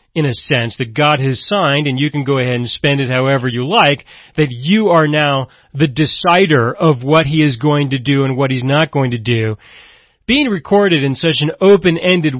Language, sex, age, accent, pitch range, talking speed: English, male, 40-59, American, 135-180 Hz, 215 wpm